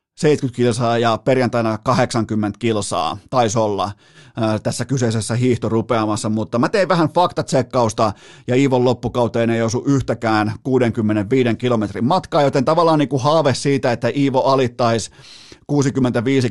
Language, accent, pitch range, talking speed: Finnish, native, 120-150 Hz, 130 wpm